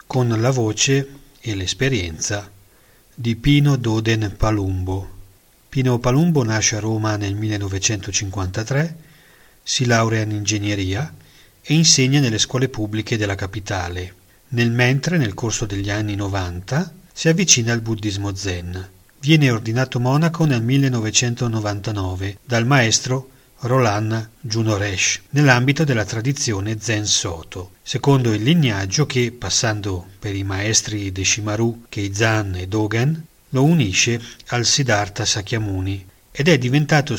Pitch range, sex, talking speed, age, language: 105-135 Hz, male, 120 wpm, 40-59, Italian